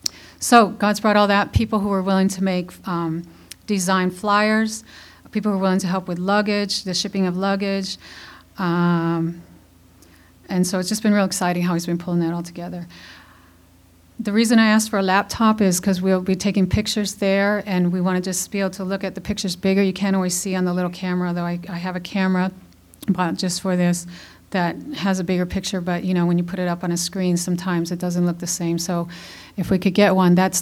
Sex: female